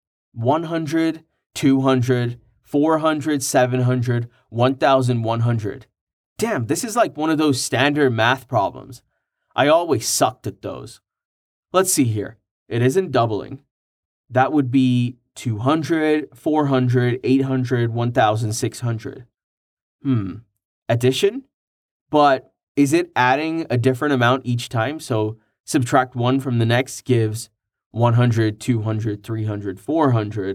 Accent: American